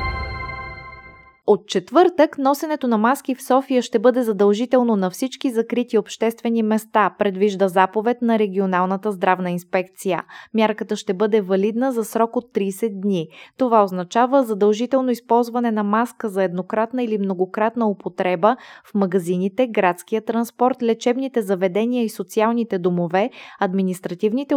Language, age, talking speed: Bulgarian, 20-39, 125 wpm